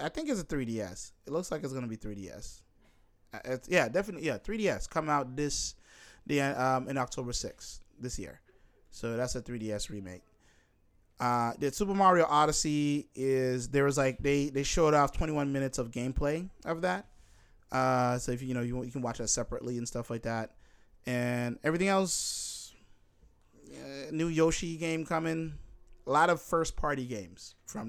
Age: 20-39